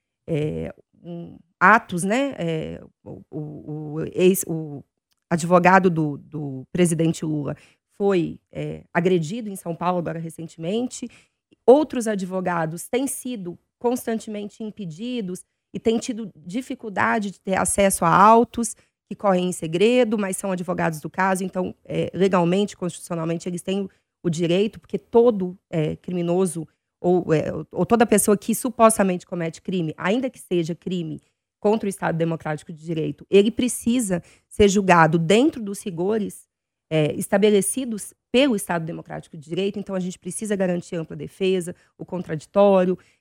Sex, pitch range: female, 170-220 Hz